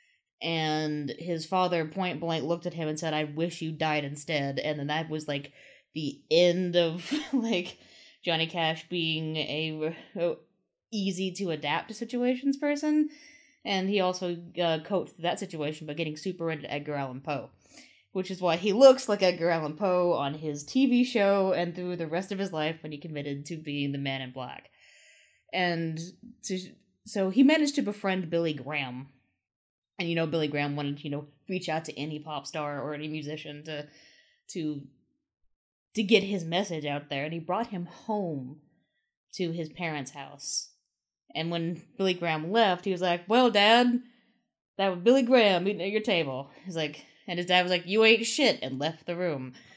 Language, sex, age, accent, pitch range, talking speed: English, female, 20-39, American, 155-210 Hz, 180 wpm